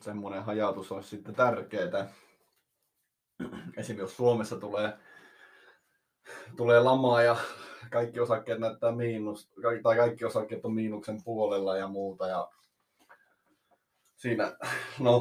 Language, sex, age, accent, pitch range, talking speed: Finnish, male, 20-39, native, 100-125 Hz, 105 wpm